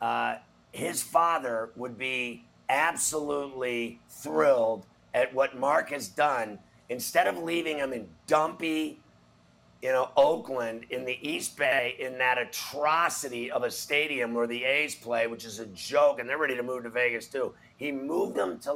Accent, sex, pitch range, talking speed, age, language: American, male, 120-150 Hz, 165 wpm, 50-69, English